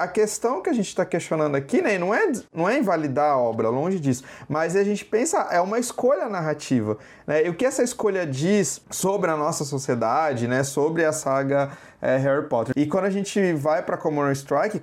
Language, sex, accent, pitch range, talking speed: Portuguese, male, Brazilian, 140-200 Hz, 210 wpm